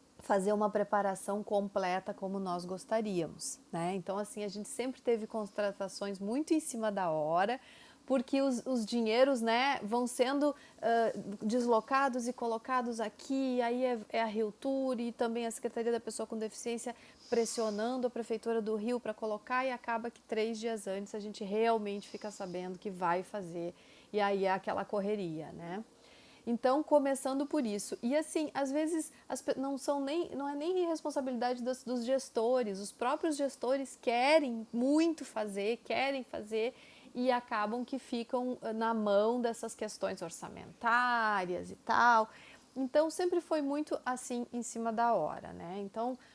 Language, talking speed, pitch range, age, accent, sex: Portuguese, 155 wpm, 205-260 Hz, 30-49, Brazilian, female